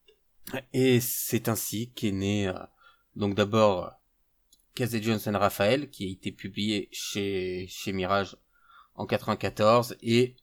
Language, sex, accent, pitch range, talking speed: French, male, French, 95-115 Hz, 120 wpm